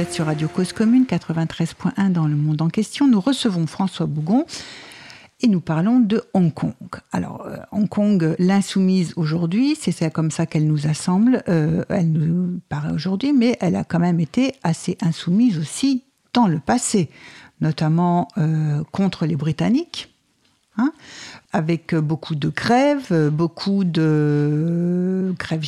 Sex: female